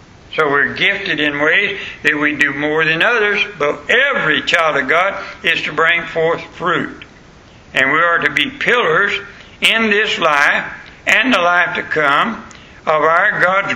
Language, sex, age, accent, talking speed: English, male, 60-79, American, 165 wpm